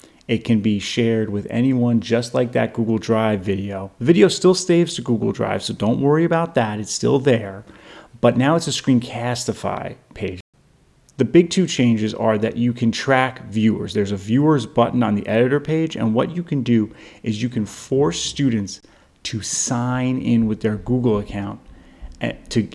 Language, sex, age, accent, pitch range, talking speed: English, male, 30-49, American, 105-125 Hz, 180 wpm